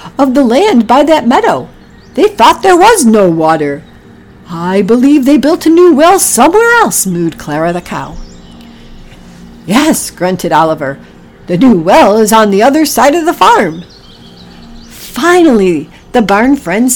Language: English